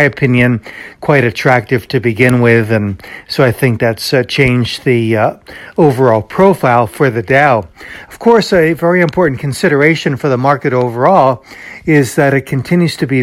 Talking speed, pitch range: 165 wpm, 115-140 Hz